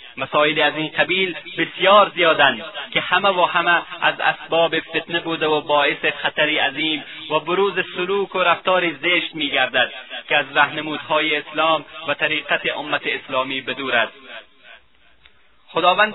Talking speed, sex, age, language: 130 wpm, male, 30-49, Persian